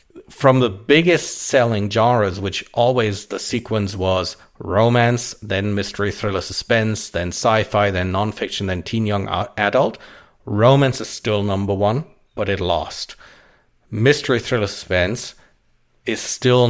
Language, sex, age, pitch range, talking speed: English, male, 50-69, 100-120 Hz, 130 wpm